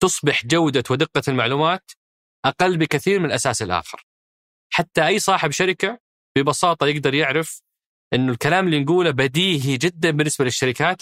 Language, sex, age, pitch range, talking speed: Arabic, male, 30-49, 115-160 Hz, 130 wpm